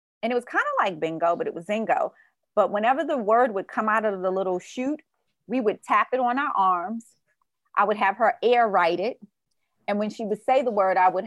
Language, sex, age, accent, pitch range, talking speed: English, female, 30-49, American, 190-245 Hz, 240 wpm